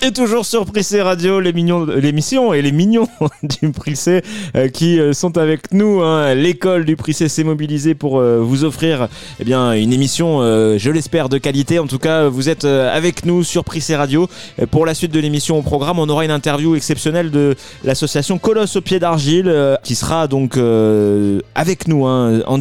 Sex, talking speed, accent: male, 185 wpm, French